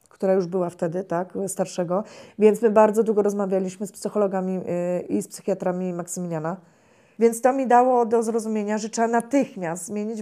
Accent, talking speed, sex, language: native, 160 wpm, female, Polish